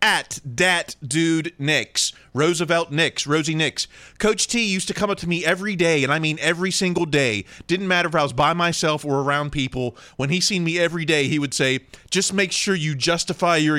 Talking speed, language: 215 wpm, English